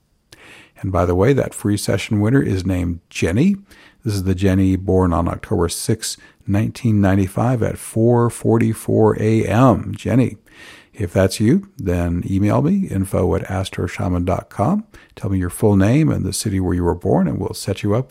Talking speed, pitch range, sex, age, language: 165 wpm, 95-115 Hz, male, 50-69, English